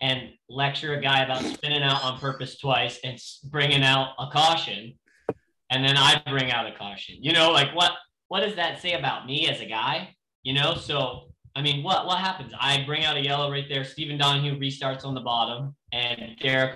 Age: 20-39